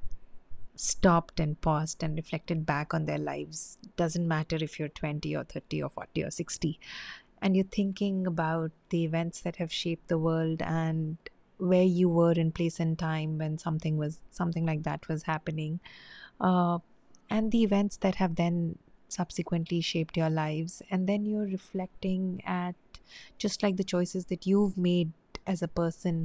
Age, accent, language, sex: 30-49, Indian, English, female